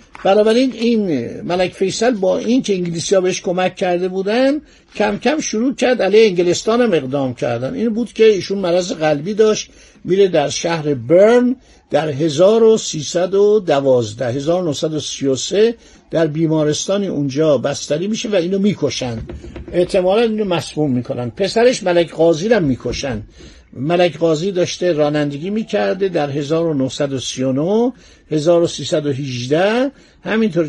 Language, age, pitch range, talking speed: Persian, 60-79, 145-205 Hz, 115 wpm